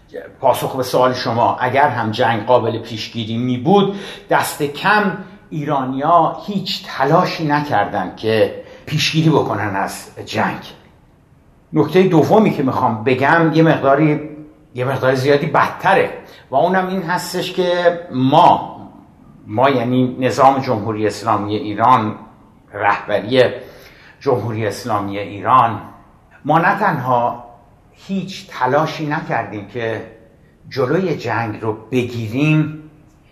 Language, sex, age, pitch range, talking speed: Persian, male, 60-79, 115-155 Hz, 110 wpm